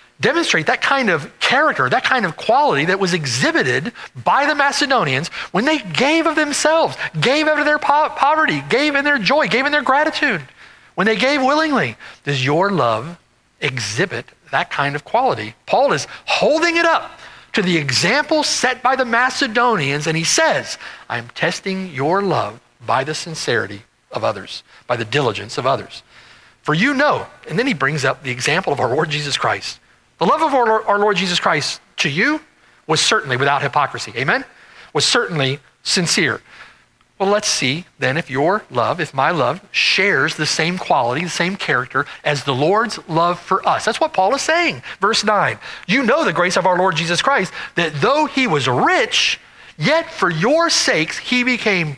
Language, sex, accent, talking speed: English, male, American, 180 wpm